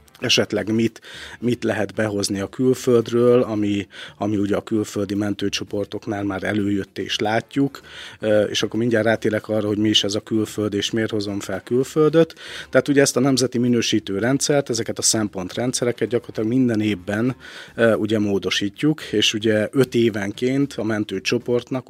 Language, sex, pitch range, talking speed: Hungarian, male, 100-120 Hz, 150 wpm